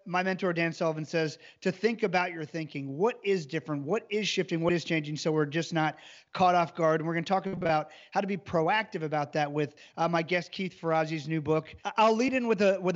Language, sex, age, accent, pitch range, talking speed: English, male, 30-49, American, 160-190 Hz, 230 wpm